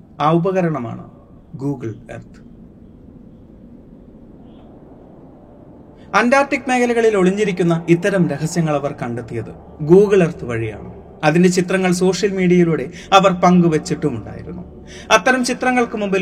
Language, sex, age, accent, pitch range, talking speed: Malayalam, male, 30-49, native, 140-190 Hz, 85 wpm